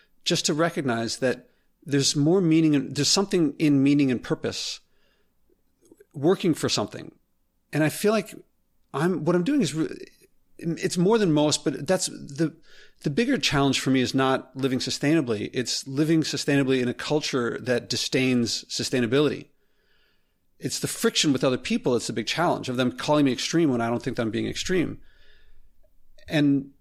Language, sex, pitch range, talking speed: English, male, 125-165 Hz, 170 wpm